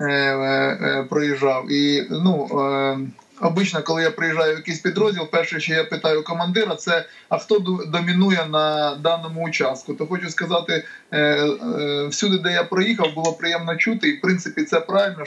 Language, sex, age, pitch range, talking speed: Ukrainian, male, 20-39, 145-170 Hz, 150 wpm